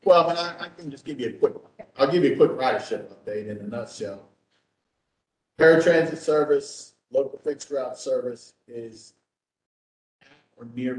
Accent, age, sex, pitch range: American, 40-59, male, 105-150 Hz